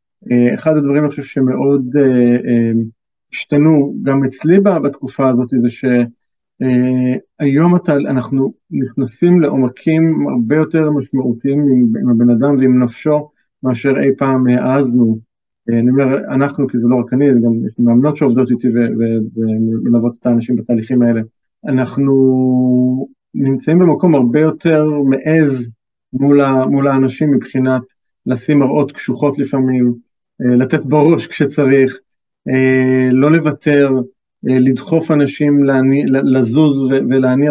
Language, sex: Hebrew, male